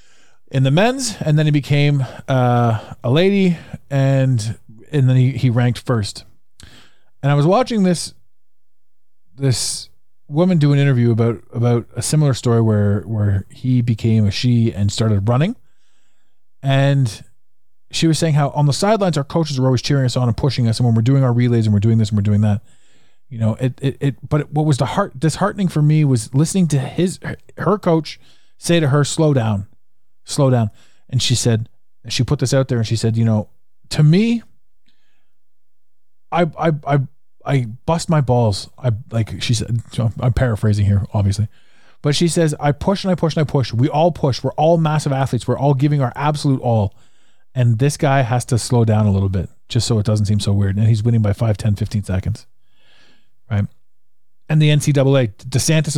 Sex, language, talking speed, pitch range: male, English, 200 wpm, 115-145 Hz